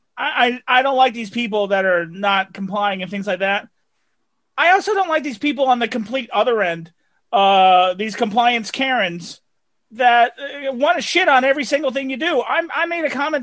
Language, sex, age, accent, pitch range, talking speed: English, male, 30-49, American, 210-265 Hz, 195 wpm